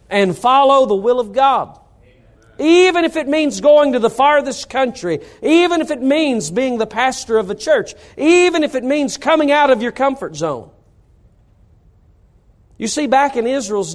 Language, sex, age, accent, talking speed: English, male, 40-59, American, 170 wpm